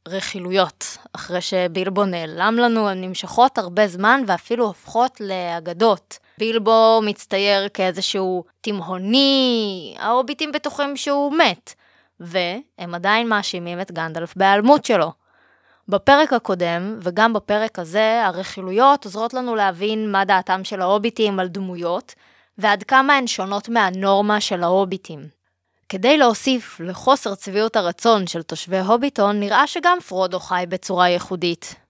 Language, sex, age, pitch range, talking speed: Hebrew, female, 20-39, 185-240 Hz, 120 wpm